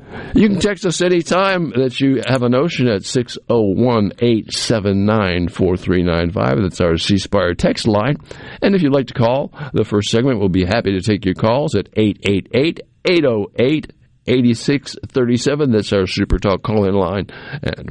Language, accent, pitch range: English, American, 90-125 Hz